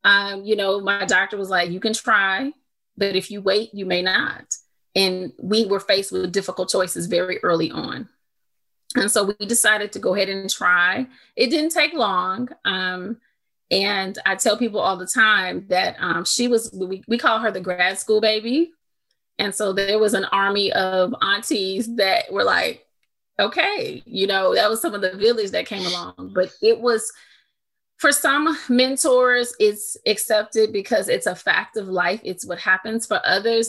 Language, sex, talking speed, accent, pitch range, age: English, female, 180 wpm, American, 190-230 Hz, 30-49